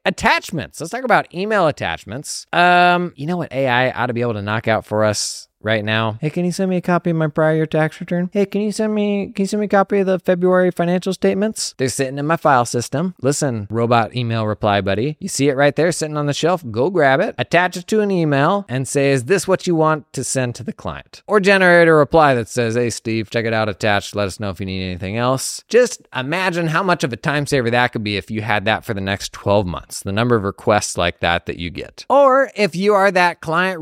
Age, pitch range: 20-39, 120-195 Hz